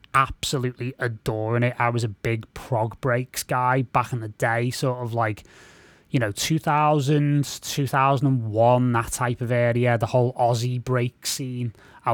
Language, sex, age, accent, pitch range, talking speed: English, male, 20-39, British, 115-140 Hz, 155 wpm